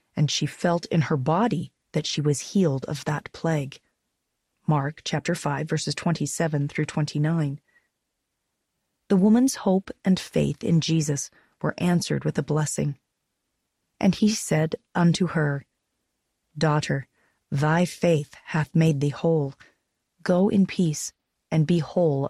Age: 30-49